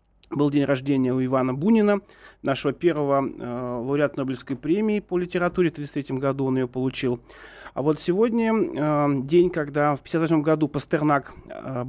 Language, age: Russian, 30-49